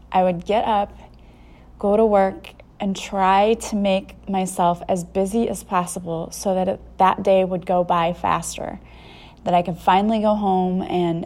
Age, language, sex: 20-39, English, female